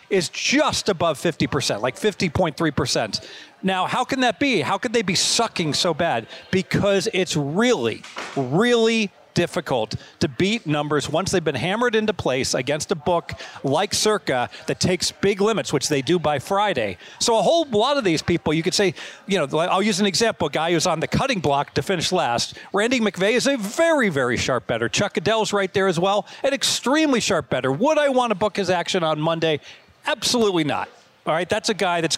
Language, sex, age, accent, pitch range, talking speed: English, male, 40-59, American, 160-210 Hz, 200 wpm